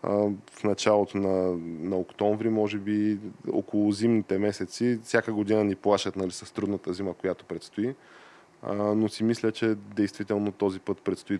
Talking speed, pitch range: 145 wpm, 95-110 Hz